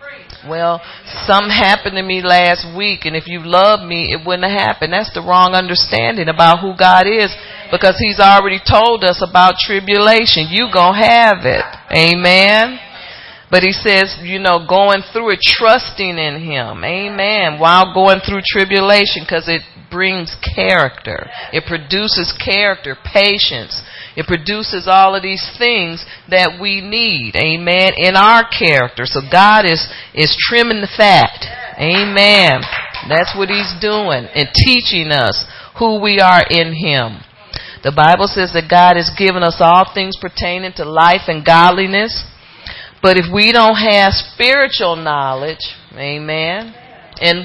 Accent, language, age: American, English, 40-59